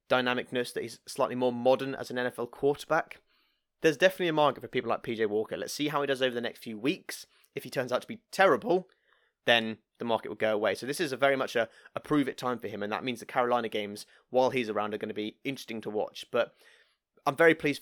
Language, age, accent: English, 30-49, British